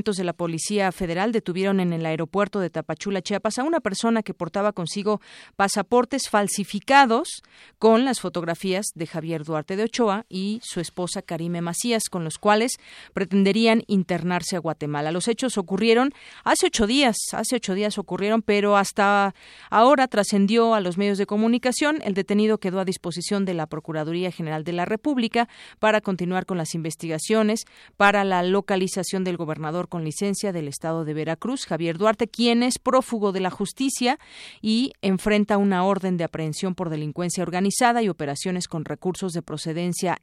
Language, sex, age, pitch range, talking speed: Spanish, female, 40-59, 175-220 Hz, 165 wpm